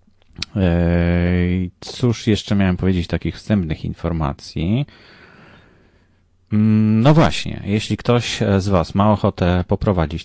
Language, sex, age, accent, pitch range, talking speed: English, male, 30-49, Polish, 85-100 Hz, 95 wpm